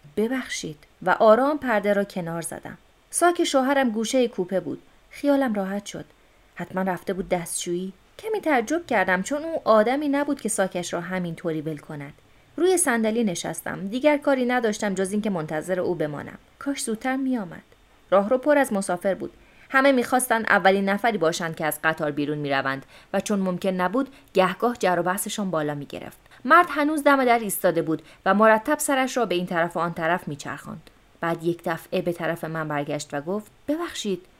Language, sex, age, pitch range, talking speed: Persian, female, 30-49, 175-255 Hz, 170 wpm